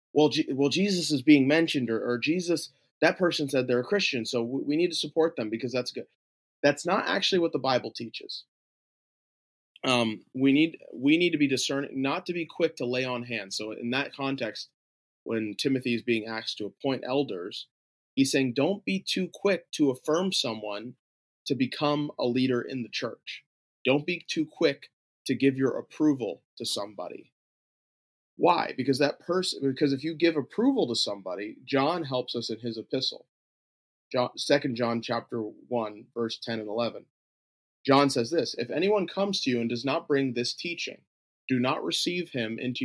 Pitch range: 120-160 Hz